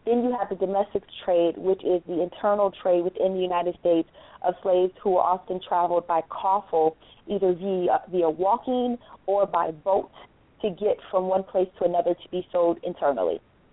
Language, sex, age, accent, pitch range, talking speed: English, female, 30-49, American, 175-210 Hz, 180 wpm